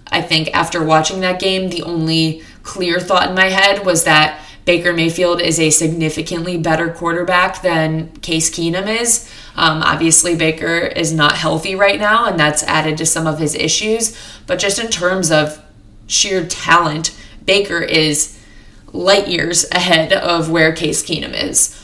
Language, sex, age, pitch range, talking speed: English, female, 20-39, 160-190 Hz, 160 wpm